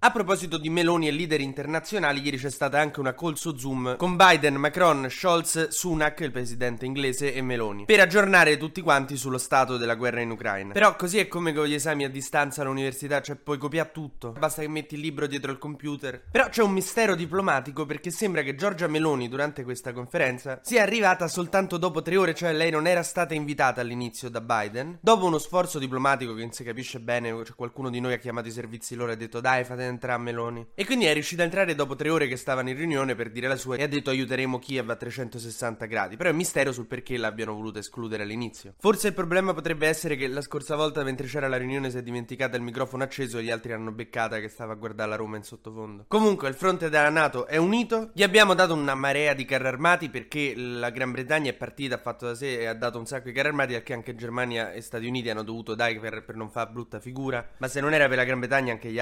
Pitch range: 120-160 Hz